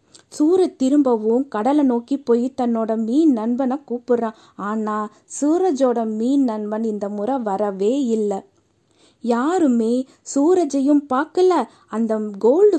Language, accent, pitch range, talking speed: Tamil, native, 225-280 Hz, 105 wpm